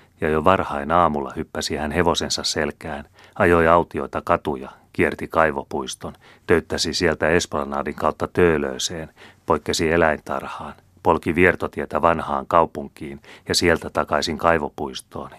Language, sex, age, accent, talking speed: Finnish, male, 30-49, native, 110 wpm